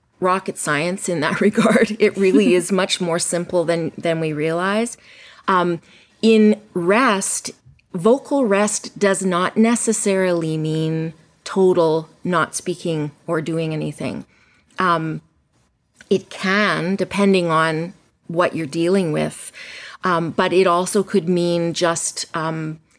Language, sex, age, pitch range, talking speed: English, female, 30-49, 160-190 Hz, 125 wpm